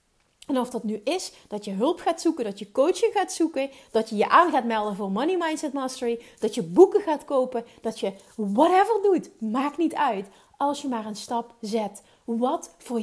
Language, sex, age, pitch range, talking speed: Dutch, female, 30-49, 220-280 Hz, 205 wpm